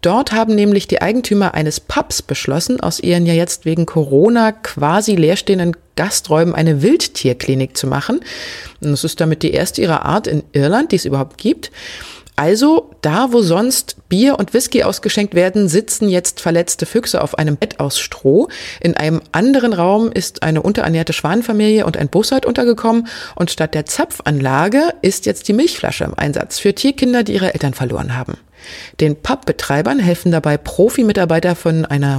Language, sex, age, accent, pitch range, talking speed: German, female, 30-49, German, 155-220 Hz, 165 wpm